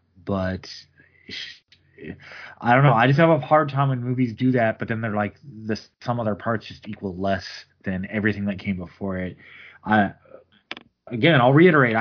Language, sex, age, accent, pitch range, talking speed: English, male, 20-39, American, 105-130 Hz, 175 wpm